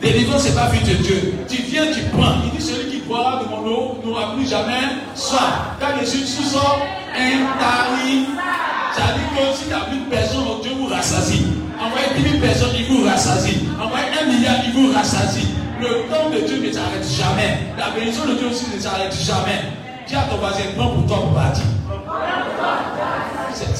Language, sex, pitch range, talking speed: French, male, 240-285 Hz, 210 wpm